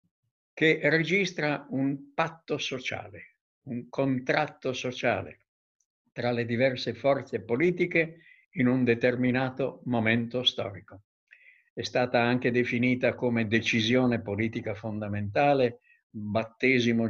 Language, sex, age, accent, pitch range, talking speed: Italian, male, 60-79, native, 115-135 Hz, 95 wpm